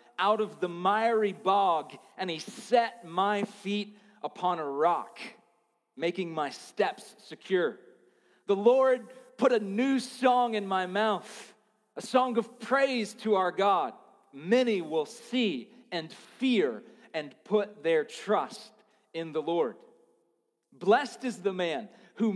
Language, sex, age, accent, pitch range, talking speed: English, male, 40-59, American, 195-240 Hz, 135 wpm